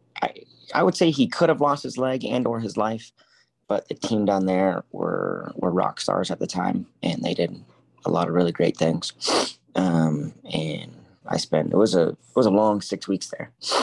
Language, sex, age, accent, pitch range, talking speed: English, male, 30-49, American, 90-110 Hz, 210 wpm